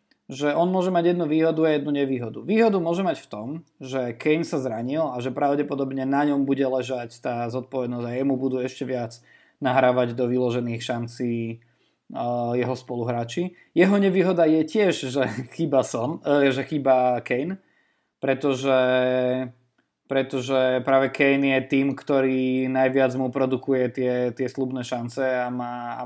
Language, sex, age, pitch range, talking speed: Slovak, male, 20-39, 125-155 Hz, 155 wpm